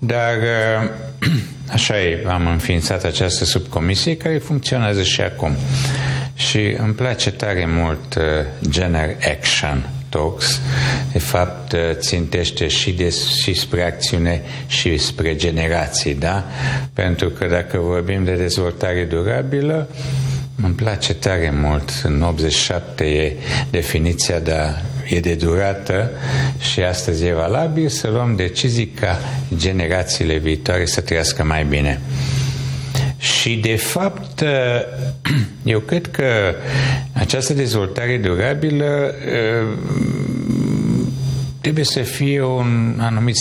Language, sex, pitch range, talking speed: Romanian, male, 90-130 Hz, 105 wpm